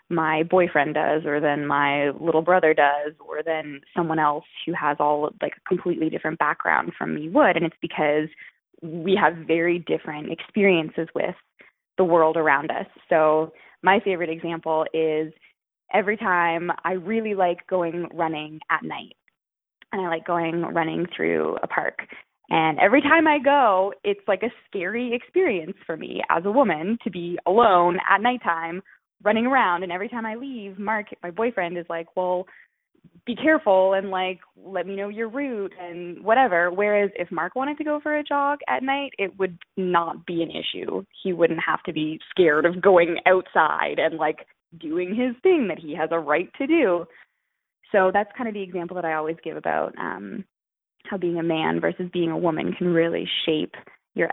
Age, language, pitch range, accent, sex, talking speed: 20-39, English, 165-210 Hz, American, female, 180 wpm